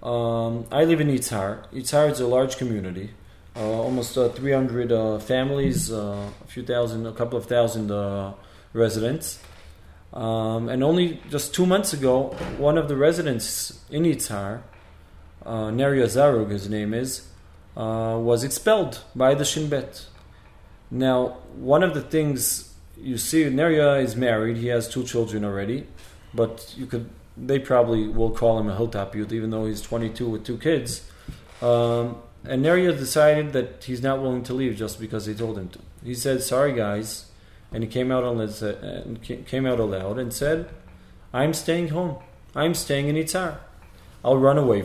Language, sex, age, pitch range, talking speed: English, male, 20-39, 110-135 Hz, 170 wpm